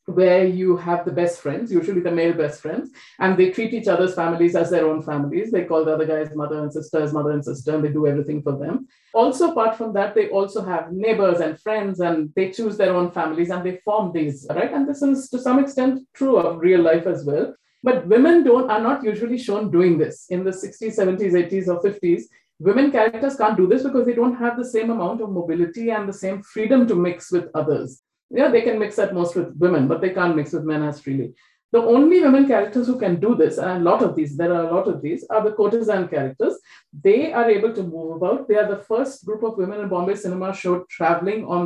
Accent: Indian